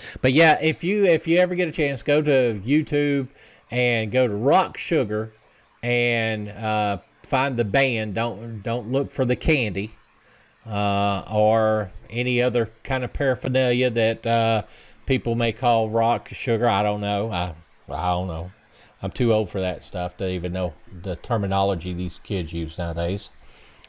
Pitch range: 100-130 Hz